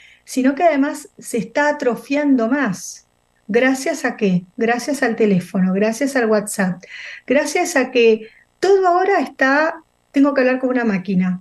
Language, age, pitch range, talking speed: Spanish, 30-49, 205-260 Hz, 145 wpm